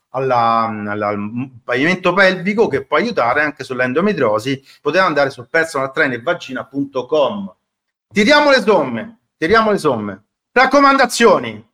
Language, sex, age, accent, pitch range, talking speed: Italian, male, 40-59, native, 135-215 Hz, 105 wpm